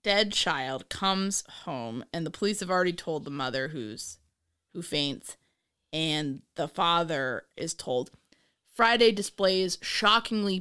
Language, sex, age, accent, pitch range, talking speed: English, female, 20-39, American, 160-205 Hz, 130 wpm